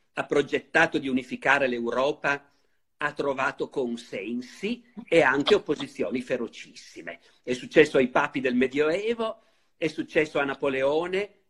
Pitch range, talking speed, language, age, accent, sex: 135-220 Hz, 115 wpm, Italian, 50-69, native, male